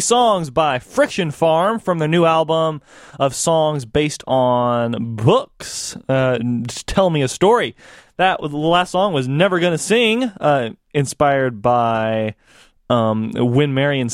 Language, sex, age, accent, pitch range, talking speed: English, male, 20-39, American, 135-185 Hz, 130 wpm